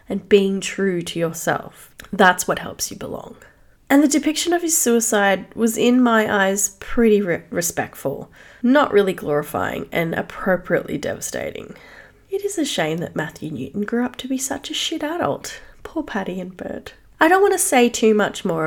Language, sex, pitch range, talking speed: English, female, 170-225 Hz, 175 wpm